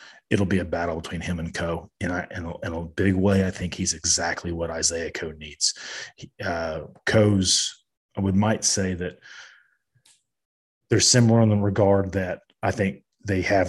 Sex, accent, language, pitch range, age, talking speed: male, American, English, 85-95 Hz, 30-49, 170 wpm